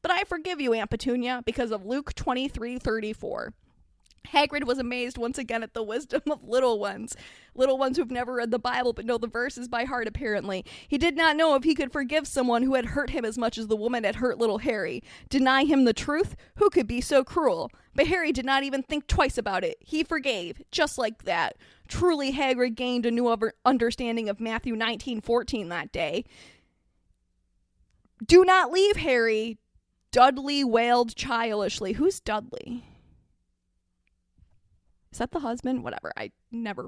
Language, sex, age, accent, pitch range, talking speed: English, female, 20-39, American, 225-285 Hz, 175 wpm